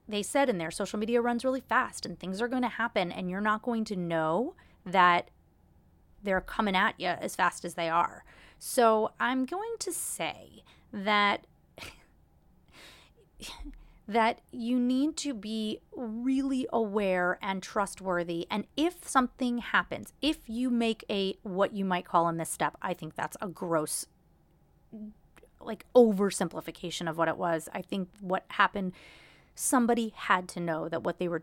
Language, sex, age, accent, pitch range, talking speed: English, female, 30-49, American, 175-230 Hz, 160 wpm